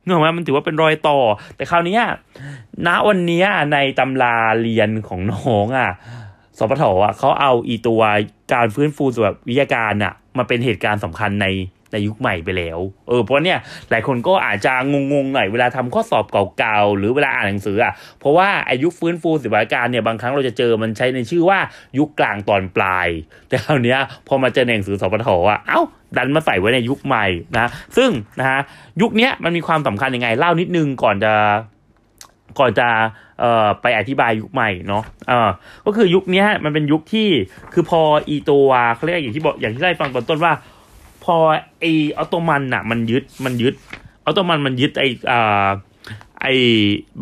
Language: Thai